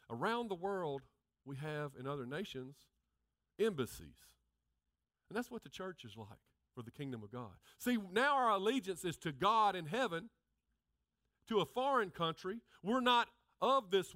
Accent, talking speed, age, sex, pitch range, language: American, 160 wpm, 50-69, male, 120-200 Hz, English